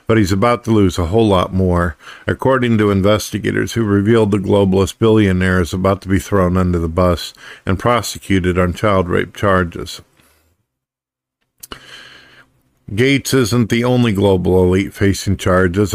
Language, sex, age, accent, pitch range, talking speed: English, male, 50-69, American, 90-110 Hz, 145 wpm